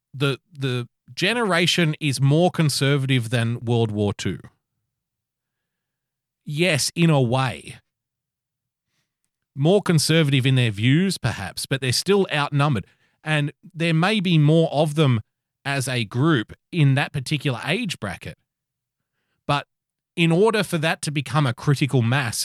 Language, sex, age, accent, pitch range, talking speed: English, male, 30-49, Australian, 120-155 Hz, 130 wpm